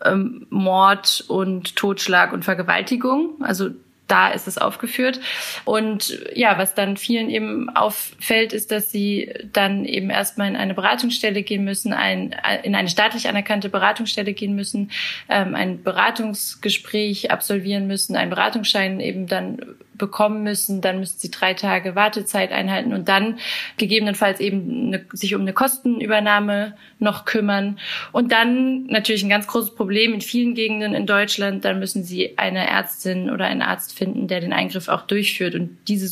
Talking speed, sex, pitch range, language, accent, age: 155 wpm, female, 195-220 Hz, German, German, 20-39